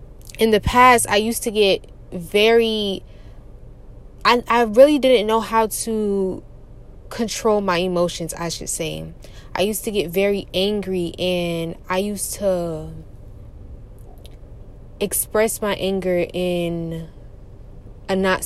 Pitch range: 165-215 Hz